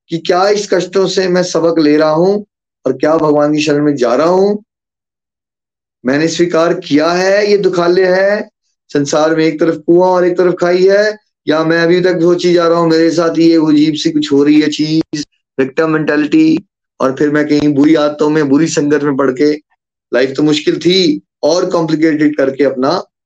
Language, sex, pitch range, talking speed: Hindi, male, 140-180 Hz, 195 wpm